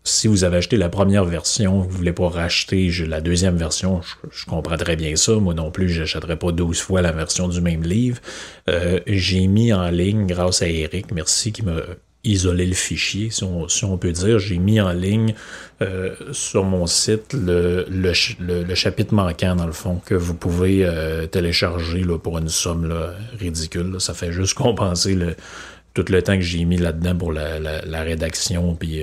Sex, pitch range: male, 85-95 Hz